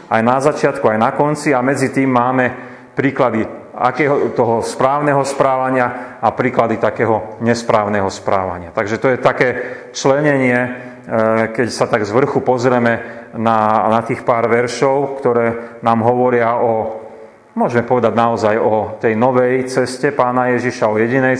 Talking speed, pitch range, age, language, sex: 145 wpm, 105-125 Hz, 40-59, Slovak, male